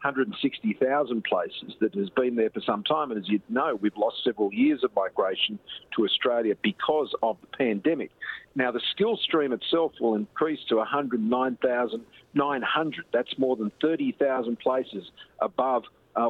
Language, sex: Punjabi, male